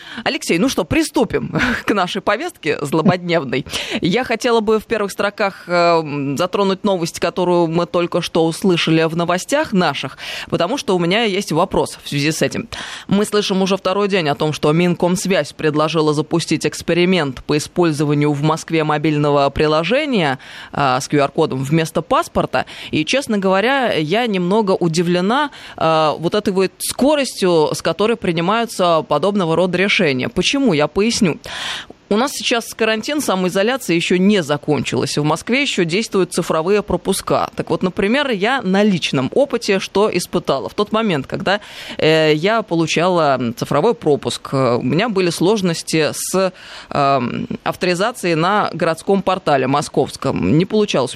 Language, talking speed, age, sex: Russian, 140 wpm, 20-39, female